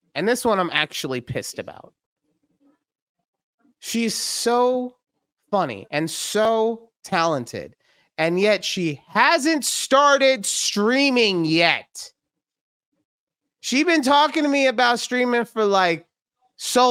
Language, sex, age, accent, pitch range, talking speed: English, male, 30-49, American, 130-215 Hz, 105 wpm